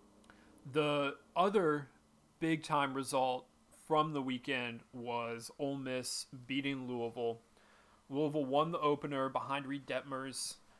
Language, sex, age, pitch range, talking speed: English, male, 30-49, 125-150 Hz, 105 wpm